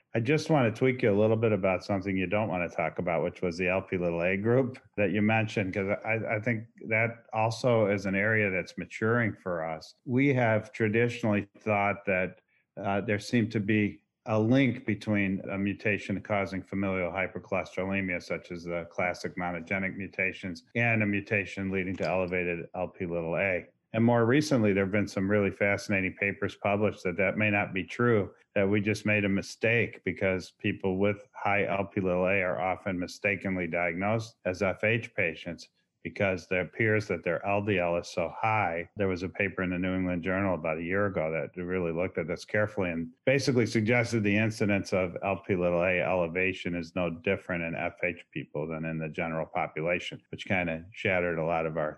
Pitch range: 90-110 Hz